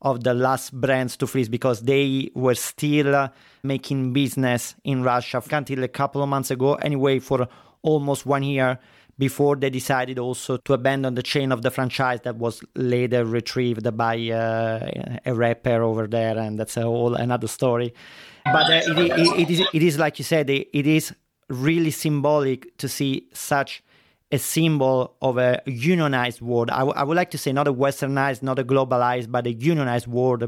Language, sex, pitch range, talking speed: Italian, male, 125-145 Hz, 180 wpm